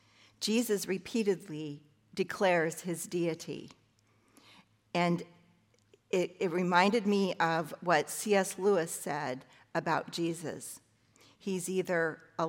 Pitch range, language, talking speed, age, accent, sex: 155-220 Hz, English, 95 wpm, 50-69, American, female